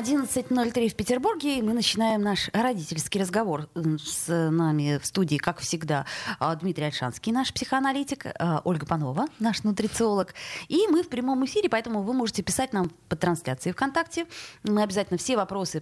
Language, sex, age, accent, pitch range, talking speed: Russian, female, 20-39, native, 165-250 Hz, 145 wpm